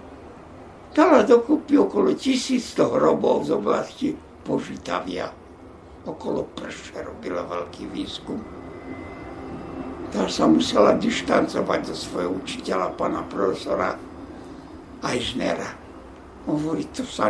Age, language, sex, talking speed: 60-79, Slovak, male, 95 wpm